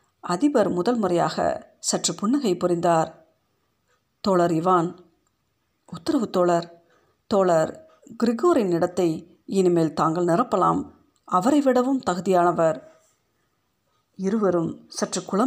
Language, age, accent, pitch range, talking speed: Tamil, 50-69, native, 170-215 Hz, 80 wpm